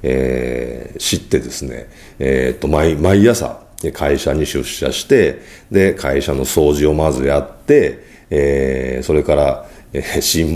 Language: Japanese